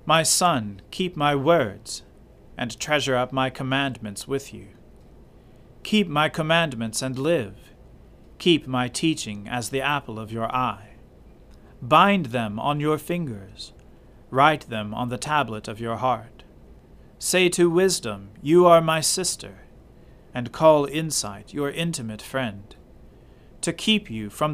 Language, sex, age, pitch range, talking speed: English, male, 40-59, 115-155 Hz, 135 wpm